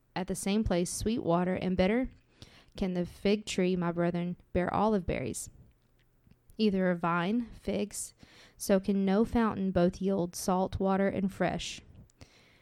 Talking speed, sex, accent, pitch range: 150 wpm, female, American, 185-205 Hz